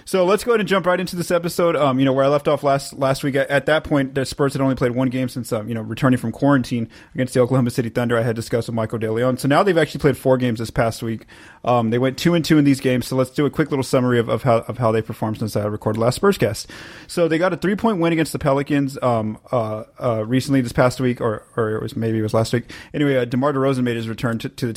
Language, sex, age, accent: English, male, 30-49, American